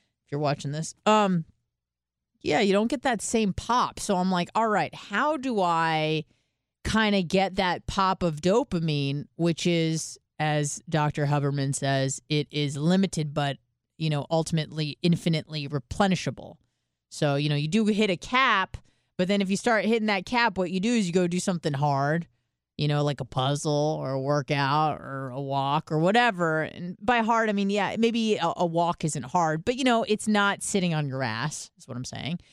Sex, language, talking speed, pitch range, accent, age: female, English, 195 wpm, 145-200 Hz, American, 30-49